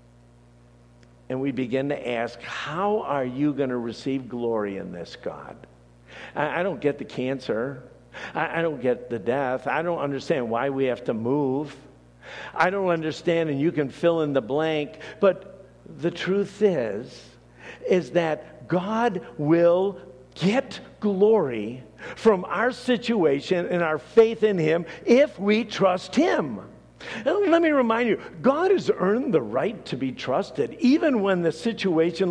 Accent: American